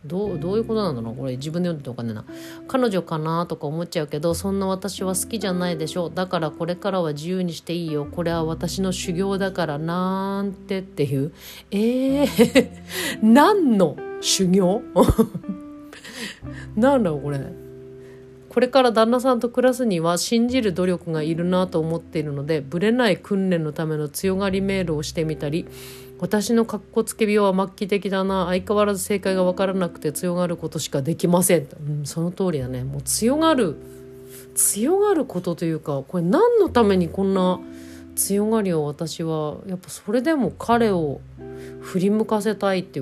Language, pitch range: Japanese, 150-210 Hz